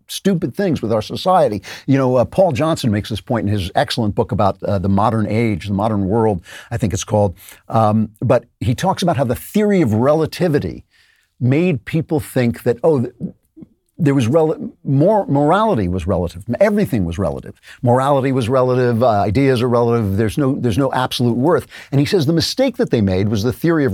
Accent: American